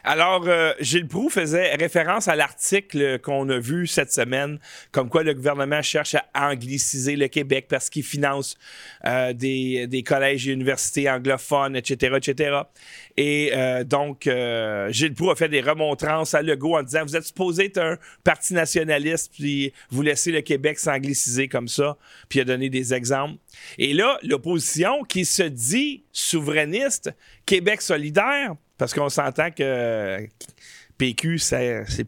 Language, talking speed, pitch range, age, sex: French, 160 wpm, 140-175 Hz, 30-49, male